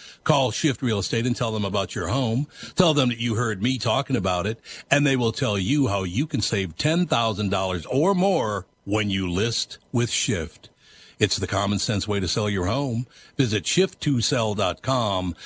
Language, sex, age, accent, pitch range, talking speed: English, male, 60-79, American, 105-155 Hz, 185 wpm